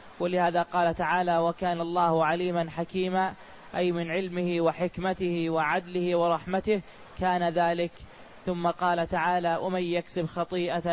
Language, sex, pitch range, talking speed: Arabic, male, 175-185 Hz, 115 wpm